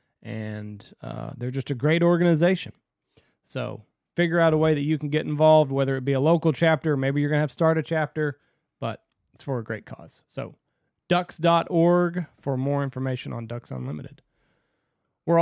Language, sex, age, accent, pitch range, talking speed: English, male, 30-49, American, 125-155 Hz, 185 wpm